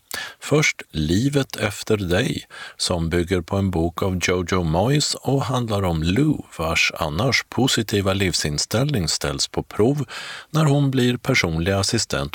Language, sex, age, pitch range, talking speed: Swedish, male, 50-69, 80-115 Hz, 135 wpm